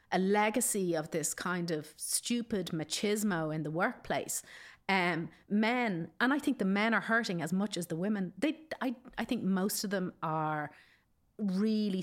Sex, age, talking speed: female, 40-59, 170 wpm